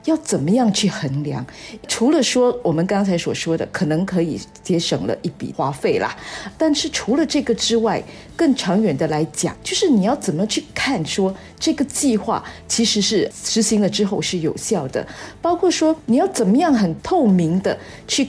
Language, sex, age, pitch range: Chinese, female, 50-69, 170-240 Hz